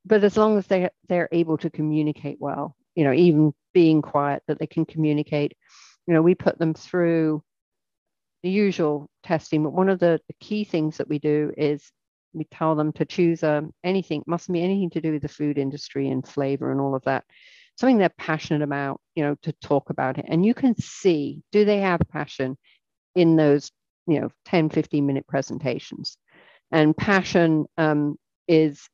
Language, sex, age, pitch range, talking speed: English, female, 50-69, 145-175 Hz, 185 wpm